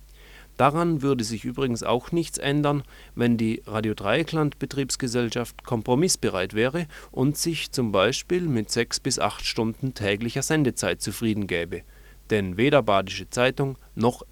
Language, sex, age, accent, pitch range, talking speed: German, male, 30-49, German, 105-135 Hz, 125 wpm